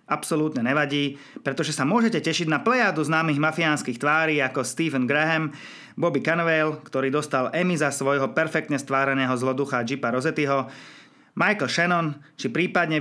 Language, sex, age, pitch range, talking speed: Slovak, male, 30-49, 130-160 Hz, 135 wpm